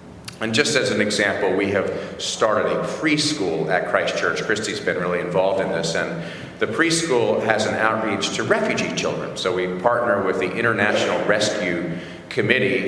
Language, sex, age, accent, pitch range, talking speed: English, male, 40-59, American, 90-110 Hz, 170 wpm